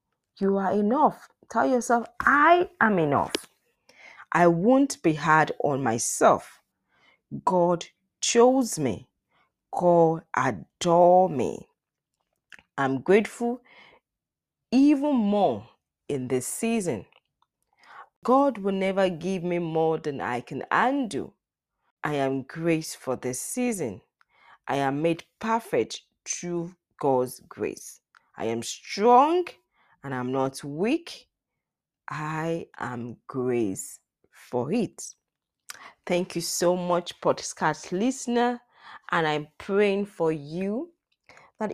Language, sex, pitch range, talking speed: English, female, 150-235 Hz, 105 wpm